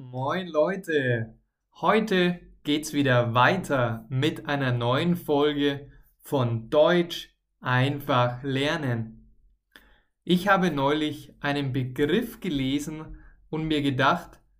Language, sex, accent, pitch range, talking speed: German, male, German, 130-175 Hz, 95 wpm